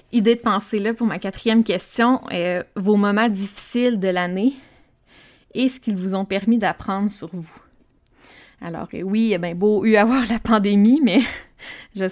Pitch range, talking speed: 190-225 Hz, 175 wpm